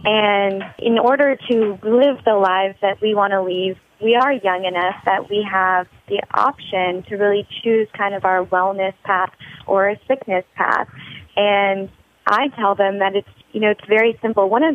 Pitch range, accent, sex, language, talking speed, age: 185-215 Hz, American, female, English, 185 wpm, 20-39